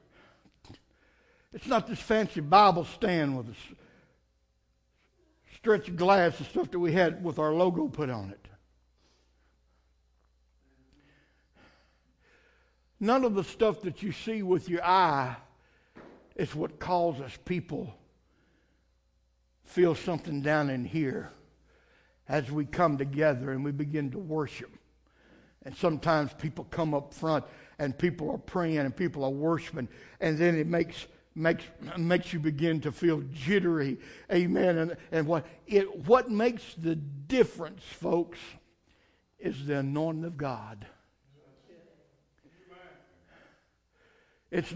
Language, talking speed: English, 120 wpm